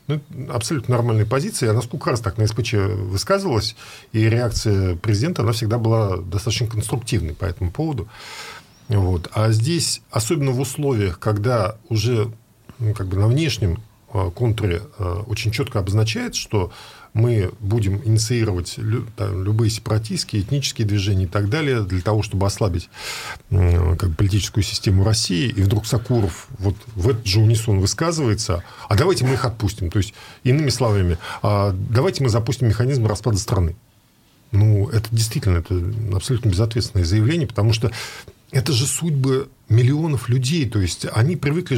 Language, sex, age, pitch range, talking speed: Russian, male, 40-59, 105-135 Hz, 140 wpm